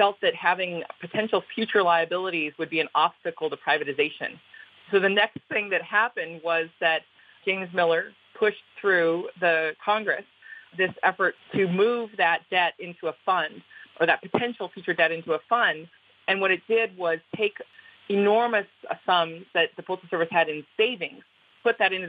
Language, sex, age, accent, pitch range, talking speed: English, female, 30-49, American, 165-215 Hz, 165 wpm